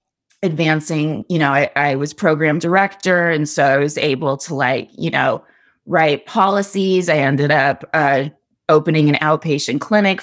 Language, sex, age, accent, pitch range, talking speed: English, female, 20-39, American, 155-195 Hz, 160 wpm